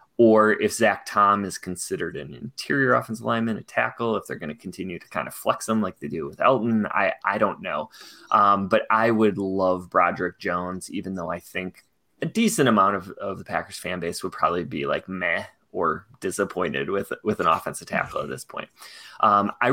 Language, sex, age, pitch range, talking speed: English, male, 20-39, 95-115 Hz, 205 wpm